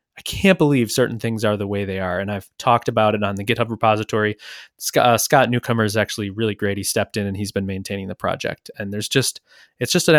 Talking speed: 240 wpm